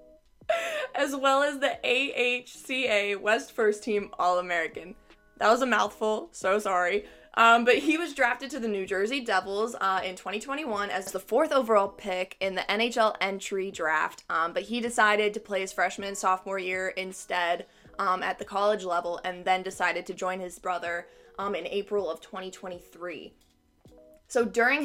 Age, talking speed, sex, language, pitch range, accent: 20-39, 165 wpm, female, English, 185-230 Hz, American